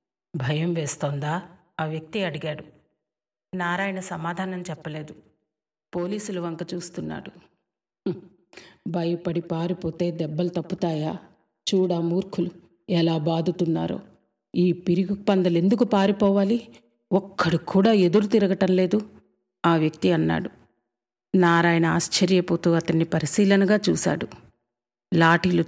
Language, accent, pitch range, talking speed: Telugu, native, 165-190 Hz, 90 wpm